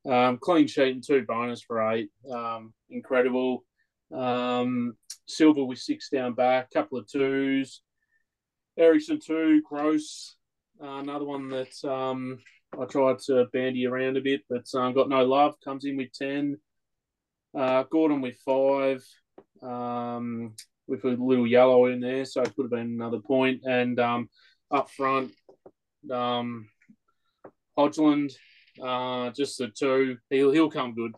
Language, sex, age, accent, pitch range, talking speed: English, male, 20-39, Australian, 125-140 Hz, 145 wpm